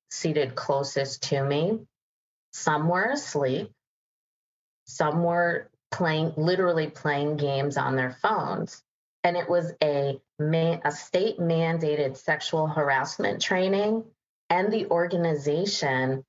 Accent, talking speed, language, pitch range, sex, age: American, 105 wpm, English, 135-175 Hz, female, 30-49